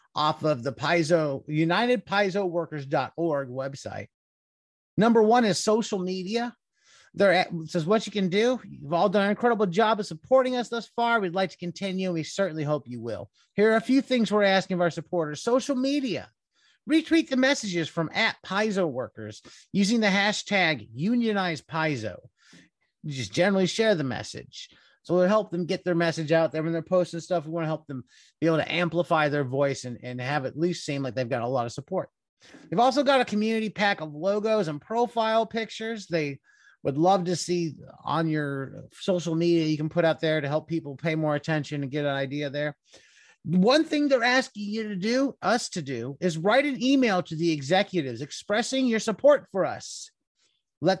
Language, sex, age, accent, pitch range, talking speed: English, male, 30-49, American, 155-205 Hz, 190 wpm